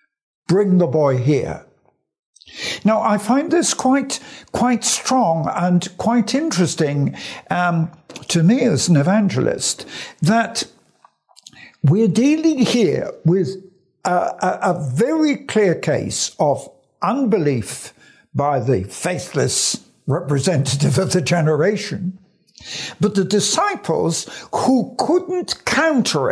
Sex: male